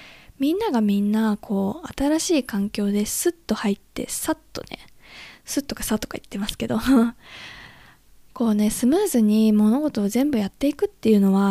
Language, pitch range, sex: Japanese, 215-315 Hz, female